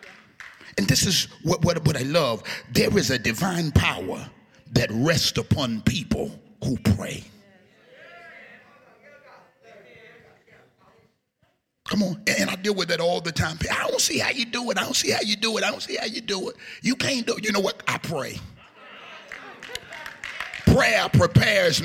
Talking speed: 170 wpm